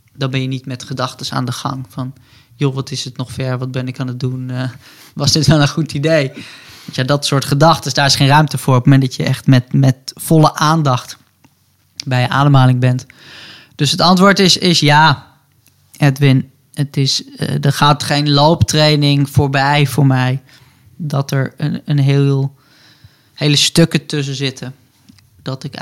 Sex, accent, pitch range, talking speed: male, Dutch, 130-145 Hz, 185 wpm